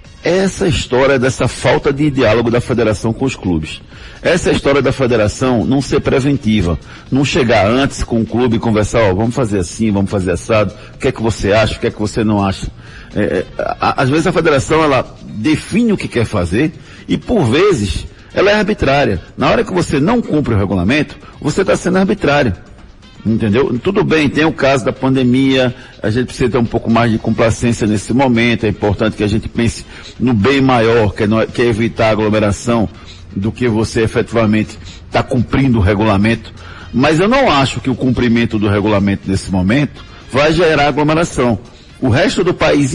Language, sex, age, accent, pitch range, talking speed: Portuguese, male, 60-79, Brazilian, 105-135 Hz, 190 wpm